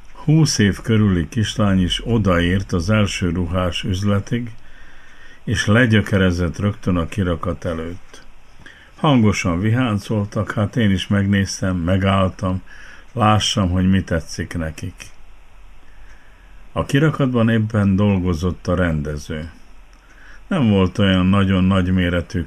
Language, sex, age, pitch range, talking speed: Hungarian, male, 50-69, 90-110 Hz, 105 wpm